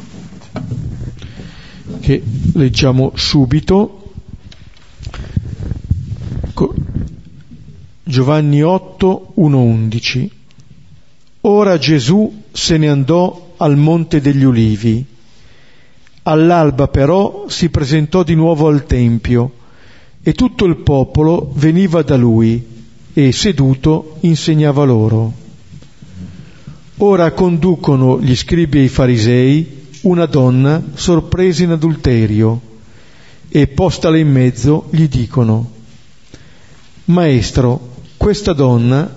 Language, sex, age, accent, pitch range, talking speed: Italian, male, 50-69, native, 120-165 Hz, 85 wpm